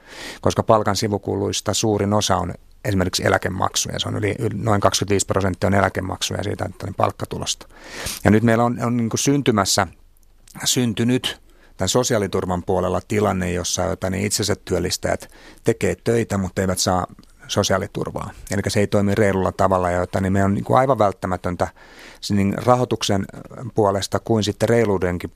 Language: Finnish